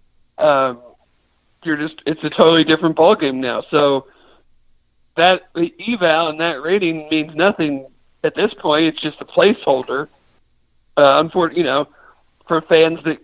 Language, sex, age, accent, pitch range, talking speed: English, male, 40-59, American, 140-165 Hz, 150 wpm